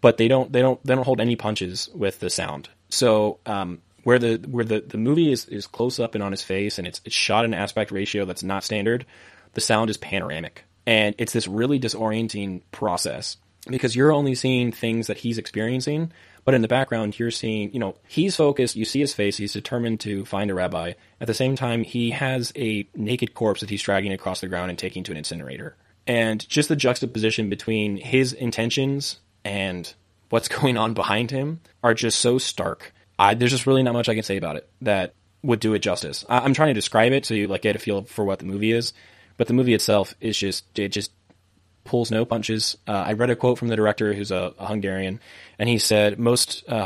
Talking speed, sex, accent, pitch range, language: 225 wpm, male, American, 100-120 Hz, English